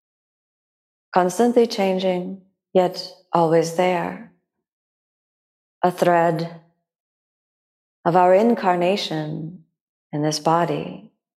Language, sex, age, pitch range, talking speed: English, female, 30-49, 155-180 Hz, 70 wpm